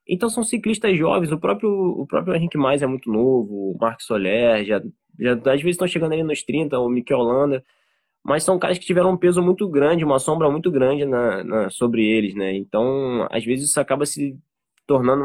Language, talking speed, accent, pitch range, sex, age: Portuguese, 190 wpm, Brazilian, 110-175 Hz, male, 20-39